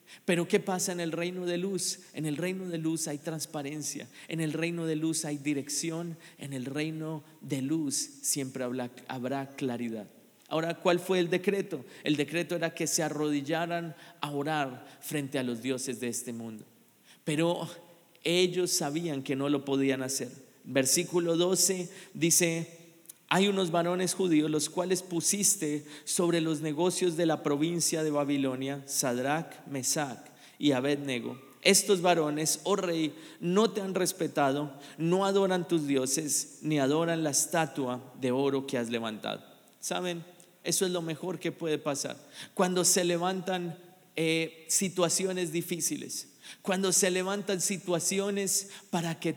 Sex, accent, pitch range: male, Colombian, 145-180 Hz